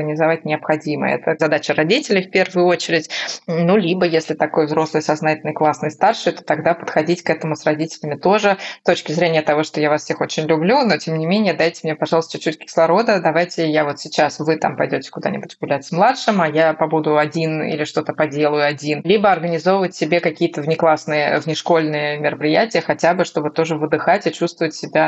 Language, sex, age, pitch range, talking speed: Russian, female, 20-39, 155-175 Hz, 185 wpm